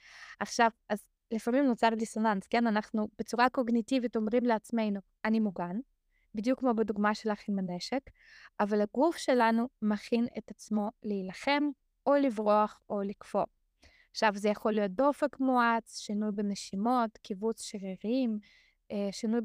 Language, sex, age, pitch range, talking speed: Hebrew, female, 20-39, 210-245 Hz, 125 wpm